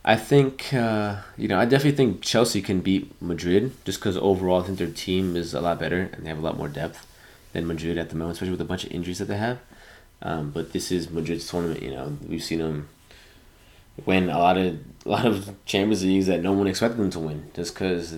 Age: 20-39